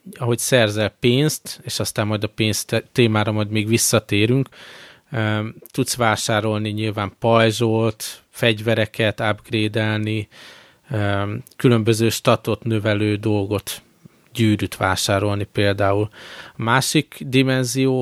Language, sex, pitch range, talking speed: Hungarian, male, 105-120 Hz, 90 wpm